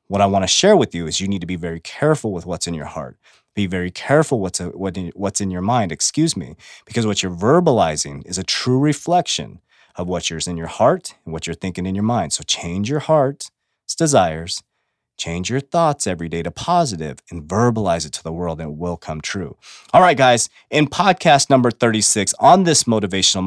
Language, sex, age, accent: English, male, 30-49, American